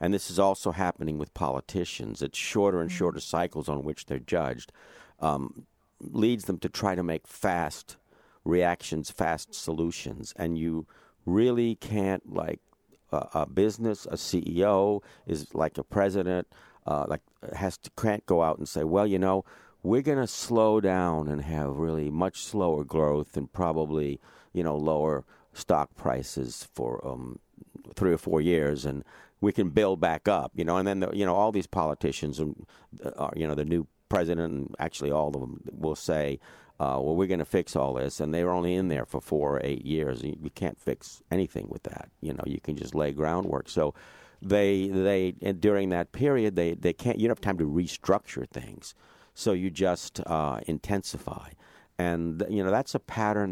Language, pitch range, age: English, 75-100 Hz, 50-69